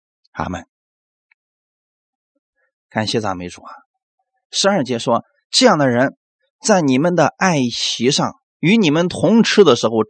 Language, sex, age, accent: Chinese, male, 20-39, native